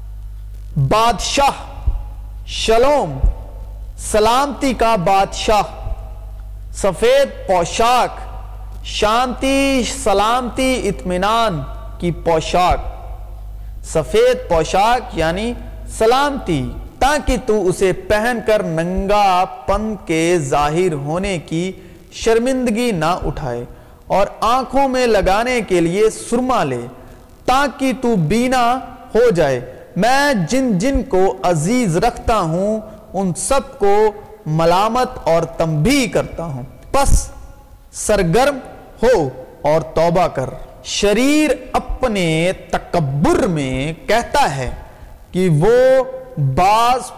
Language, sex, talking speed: Urdu, male, 95 wpm